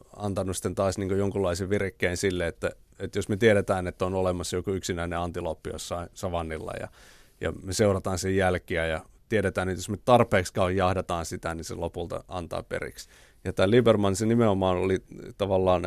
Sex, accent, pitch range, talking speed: male, native, 90-105 Hz, 175 wpm